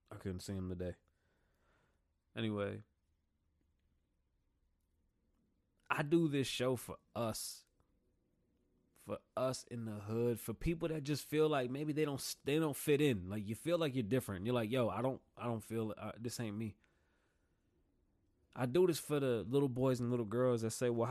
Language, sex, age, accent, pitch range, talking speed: English, male, 20-39, American, 90-125 Hz, 175 wpm